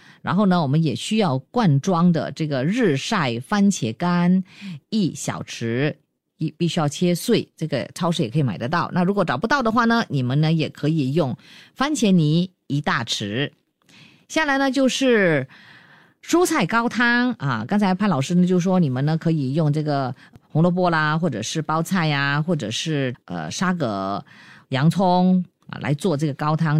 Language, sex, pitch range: Chinese, female, 145-195 Hz